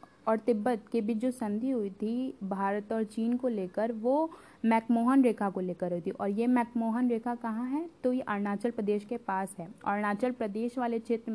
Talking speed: 195 wpm